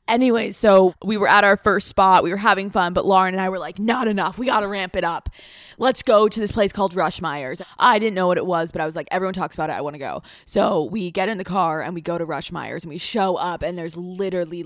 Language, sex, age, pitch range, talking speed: English, female, 20-39, 180-220 Hz, 290 wpm